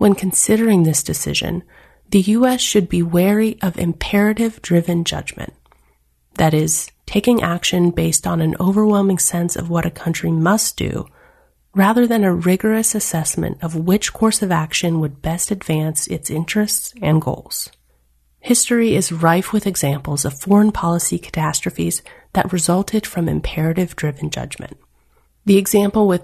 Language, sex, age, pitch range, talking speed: English, female, 30-49, 155-200 Hz, 135 wpm